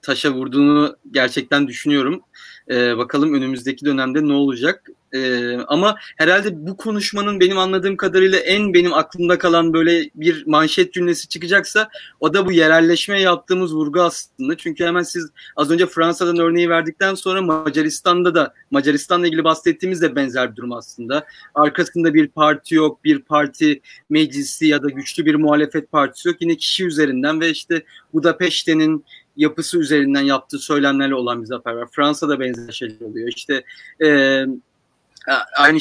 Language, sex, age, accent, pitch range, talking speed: Turkish, male, 30-49, native, 145-185 Hz, 145 wpm